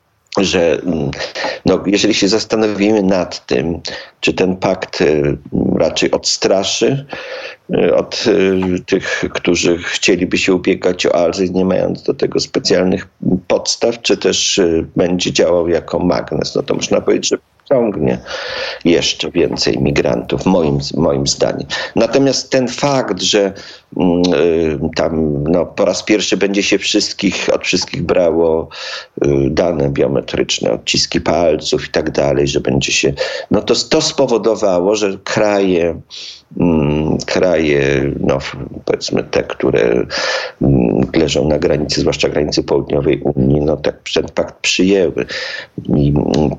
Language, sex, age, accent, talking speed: Polish, male, 50-69, native, 125 wpm